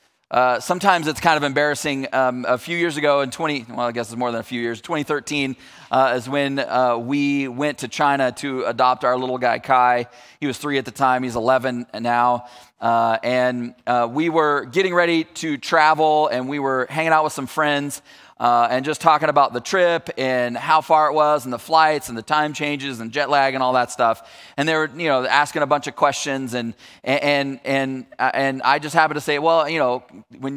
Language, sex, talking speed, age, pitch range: English, male, 220 wpm, 30-49, 125-155 Hz